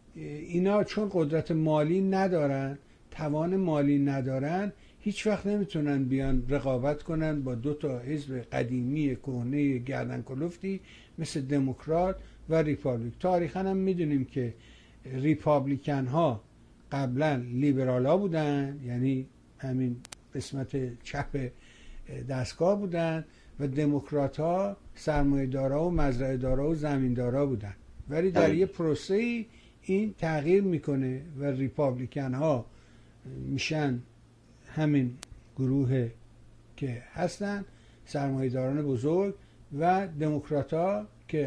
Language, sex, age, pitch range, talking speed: Persian, male, 60-79, 130-160 Hz, 100 wpm